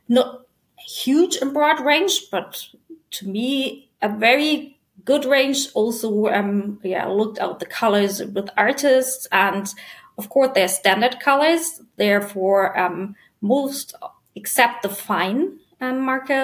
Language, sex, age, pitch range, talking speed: English, female, 20-39, 205-265 Hz, 130 wpm